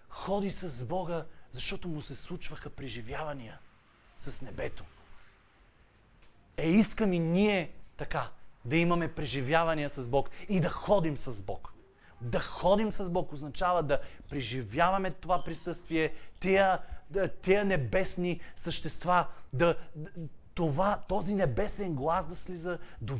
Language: Bulgarian